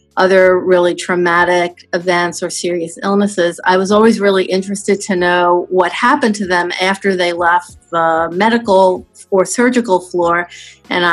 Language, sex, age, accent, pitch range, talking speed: English, female, 40-59, American, 170-190 Hz, 145 wpm